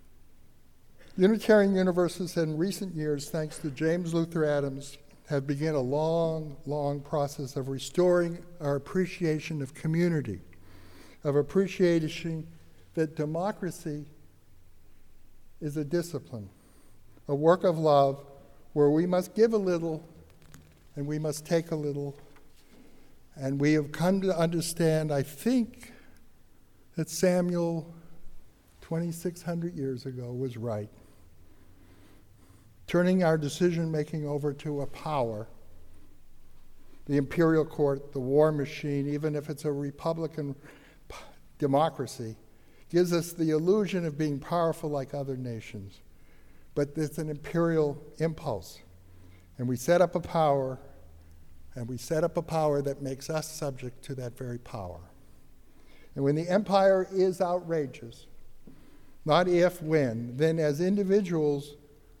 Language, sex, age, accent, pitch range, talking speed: English, male, 60-79, American, 130-165 Hz, 120 wpm